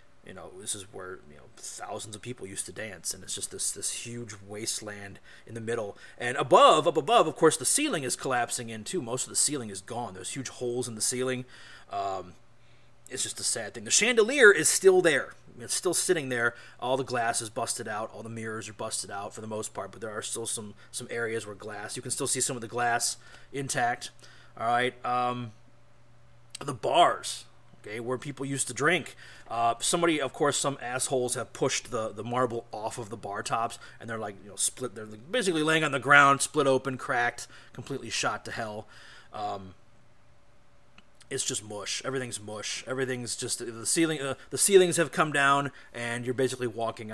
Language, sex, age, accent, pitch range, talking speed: English, male, 30-49, American, 115-140 Hz, 205 wpm